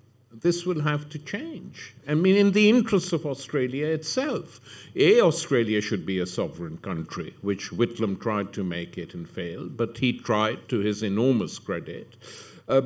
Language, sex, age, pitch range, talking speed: English, male, 50-69, 115-160 Hz, 170 wpm